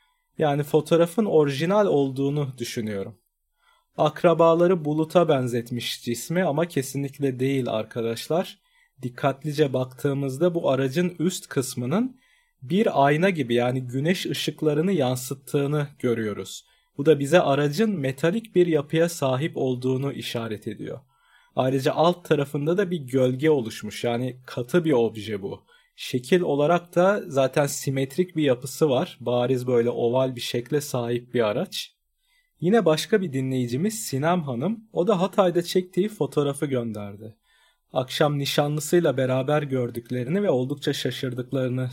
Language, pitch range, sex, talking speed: Turkish, 125-170 Hz, male, 120 wpm